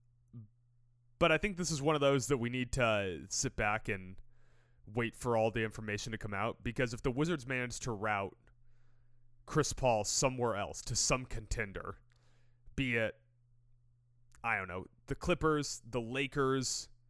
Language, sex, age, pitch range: English, male, 30-49, 115-130 Hz